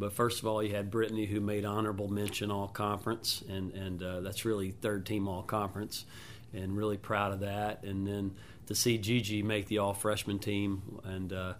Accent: American